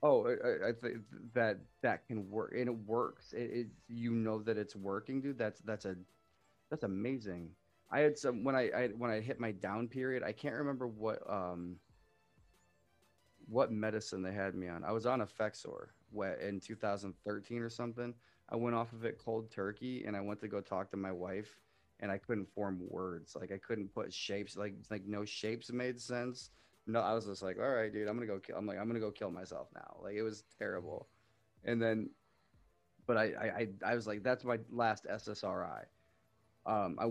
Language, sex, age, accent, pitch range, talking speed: English, male, 30-49, American, 100-125 Hz, 205 wpm